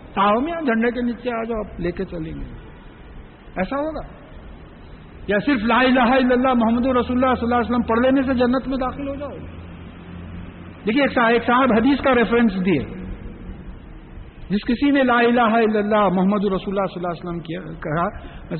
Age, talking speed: 60-79, 115 wpm